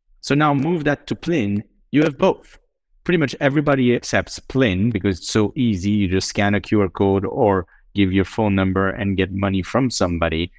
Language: English